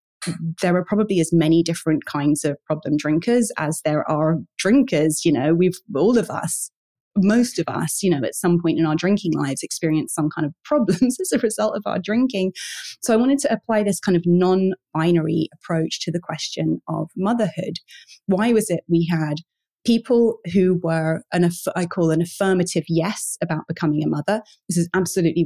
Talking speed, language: 190 wpm, English